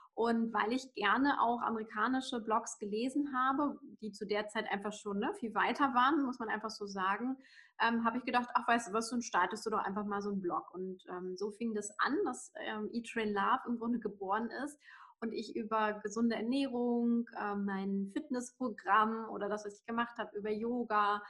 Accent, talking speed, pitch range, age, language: German, 200 wpm, 210-250 Hz, 20-39, German